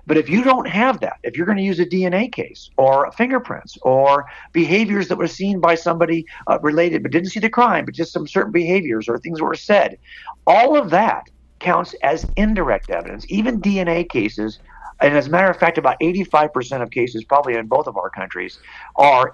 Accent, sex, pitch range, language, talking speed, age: American, male, 130-180 Hz, English, 210 wpm, 50-69